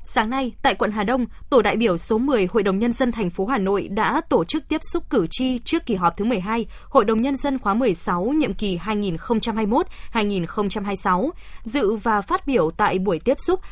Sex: female